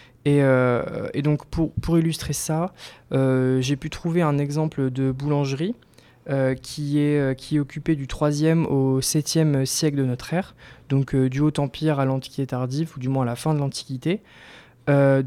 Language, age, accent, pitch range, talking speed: French, 20-39, French, 130-155 Hz, 190 wpm